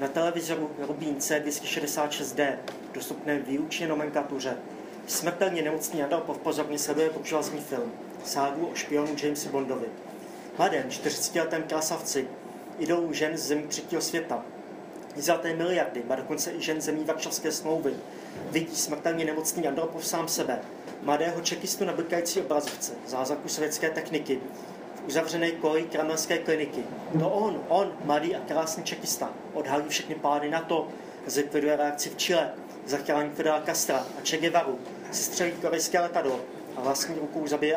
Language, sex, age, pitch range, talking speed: Czech, male, 30-49, 145-165 Hz, 130 wpm